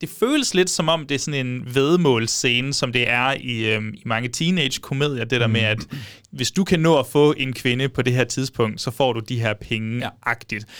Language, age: Danish, 30-49